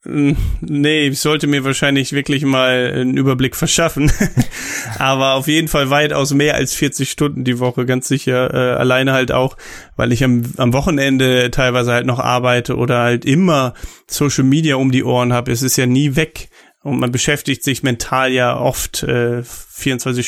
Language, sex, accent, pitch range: German, male, German, 125-140 Hz